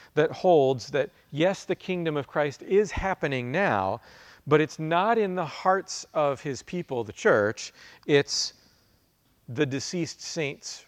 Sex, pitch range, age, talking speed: male, 120-155 Hz, 40-59, 145 wpm